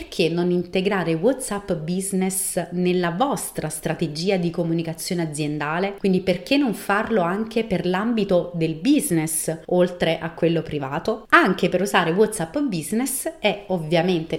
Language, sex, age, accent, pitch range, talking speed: Italian, female, 30-49, native, 165-200 Hz, 130 wpm